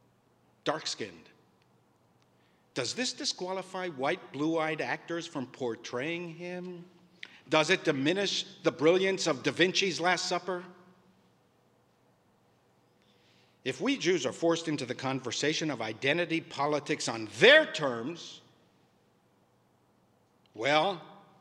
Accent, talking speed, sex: American, 105 wpm, male